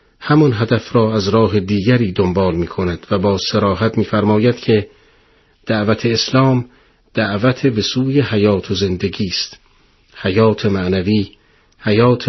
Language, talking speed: Persian, 120 wpm